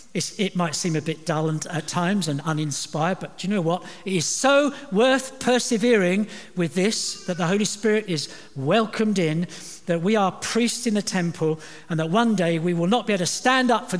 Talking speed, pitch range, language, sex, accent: 220 wpm, 170-245 Hz, English, male, British